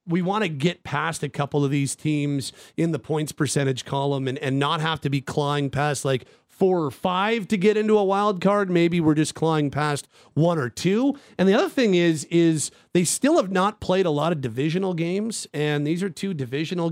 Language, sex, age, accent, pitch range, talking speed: English, male, 40-59, American, 145-185 Hz, 220 wpm